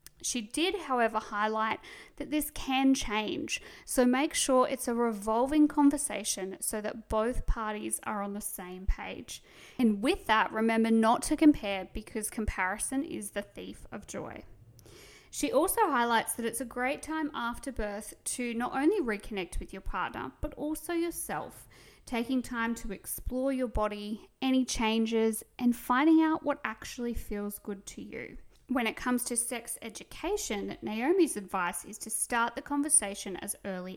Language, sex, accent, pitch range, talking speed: English, female, Australian, 210-265 Hz, 160 wpm